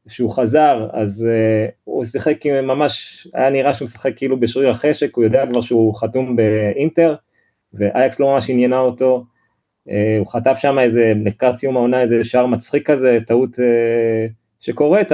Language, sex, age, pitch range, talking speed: Hebrew, male, 20-39, 110-135 Hz, 155 wpm